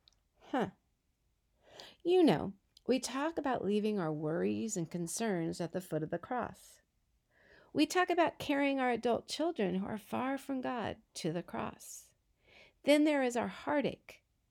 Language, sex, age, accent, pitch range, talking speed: English, female, 50-69, American, 185-270 Hz, 155 wpm